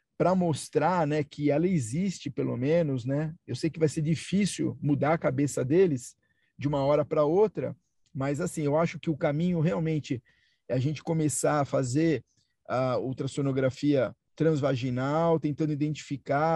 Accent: Brazilian